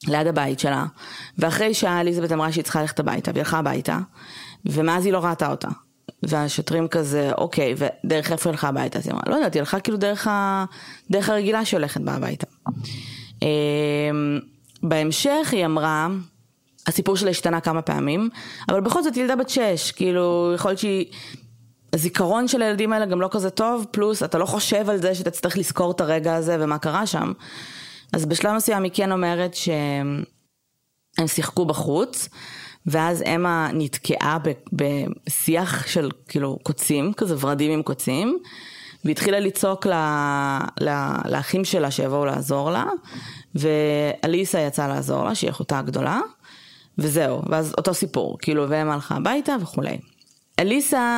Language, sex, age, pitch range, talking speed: Hebrew, female, 20-39, 150-195 Hz, 150 wpm